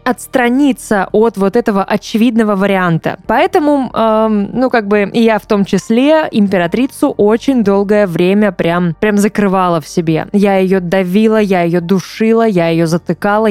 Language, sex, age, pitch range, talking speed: Russian, female, 20-39, 195-250 Hz, 145 wpm